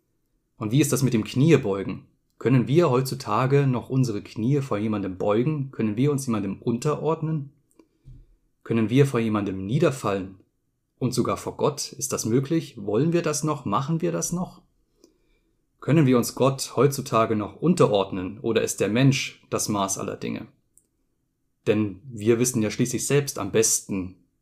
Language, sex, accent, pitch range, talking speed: German, male, German, 110-135 Hz, 155 wpm